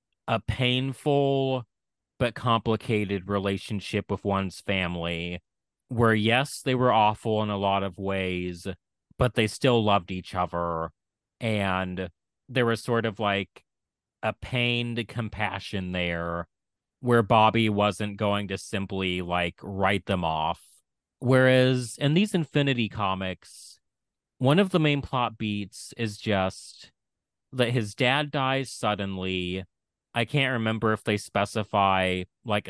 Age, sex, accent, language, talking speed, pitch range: 30-49, male, American, English, 125 wpm, 95-125 Hz